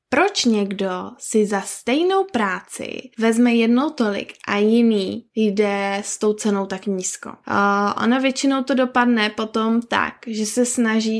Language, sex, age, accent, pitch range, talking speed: Czech, female, 20-39, native, 205-245 Hz, 140 wpm